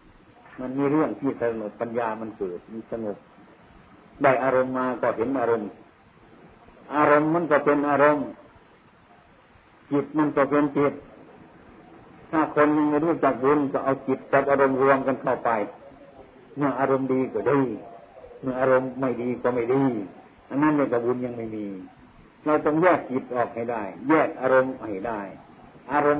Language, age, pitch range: Thai, 50-69, 115-140 Hz